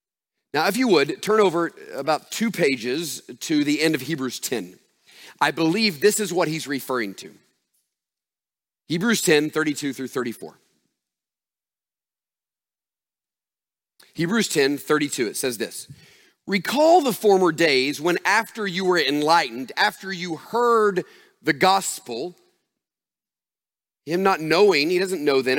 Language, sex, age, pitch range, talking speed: English, male, 40-59, 160-225 Hz, 130 wpm